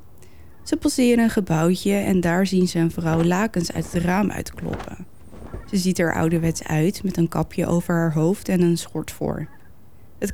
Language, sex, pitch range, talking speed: Dutch, female, 160-205 Hz, 180 wpm